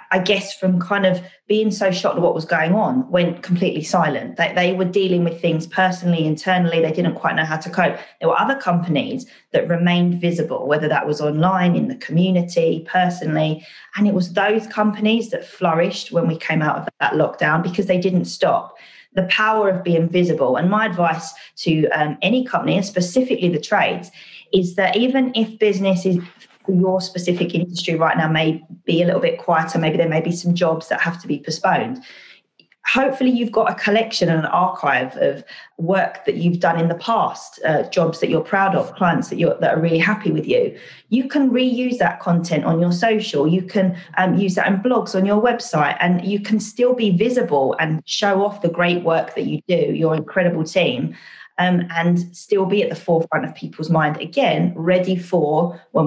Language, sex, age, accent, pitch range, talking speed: English, female, 20-39, British, 165-200 Hz, 200 wpm